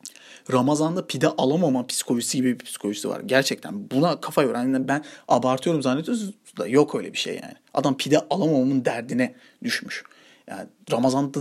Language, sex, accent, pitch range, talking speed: Turkish, male, native, 130-220 Hz, 145 wpm